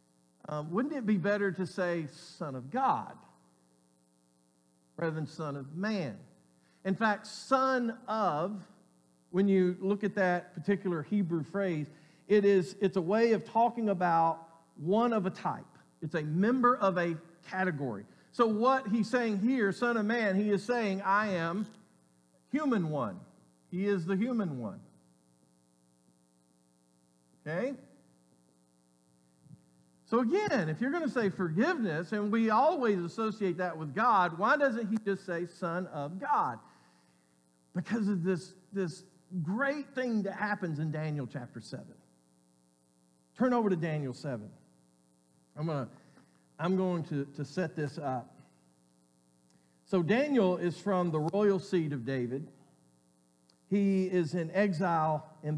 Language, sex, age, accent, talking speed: English, male, 50-69, American, 140 wpm